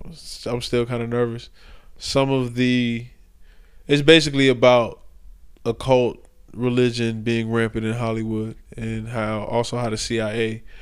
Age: 20-39